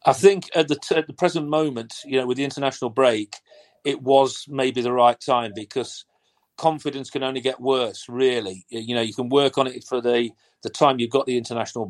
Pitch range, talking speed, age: 125-150 Hz, 210 wpm, 40-59